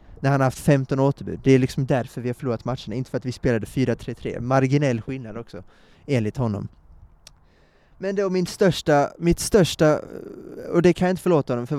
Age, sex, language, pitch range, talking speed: 20-39, male, Swedish, 120-160 Hz, 200 wpm